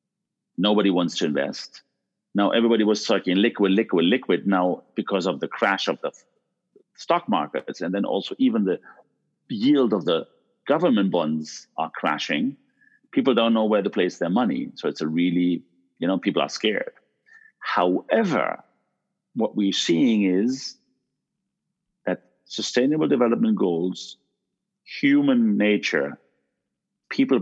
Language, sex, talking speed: English, male, 135 wpm